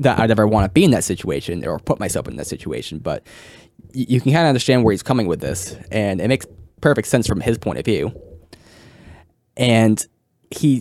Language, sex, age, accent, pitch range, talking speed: English, male, 10-29, American, 110-130 Hz, 210 wpm